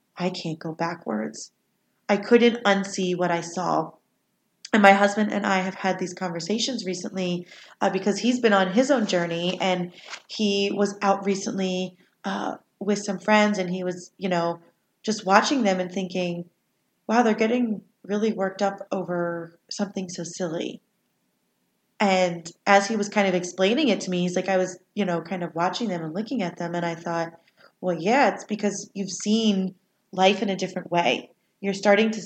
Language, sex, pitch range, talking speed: English, female, 175-205 Hz, 180 wpm